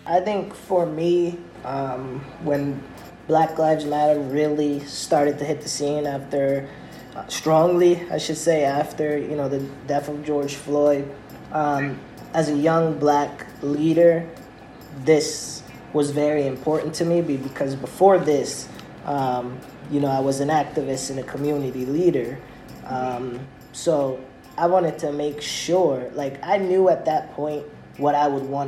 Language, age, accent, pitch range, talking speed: English, 20-39, American, 135-155 Hz, 150 wpm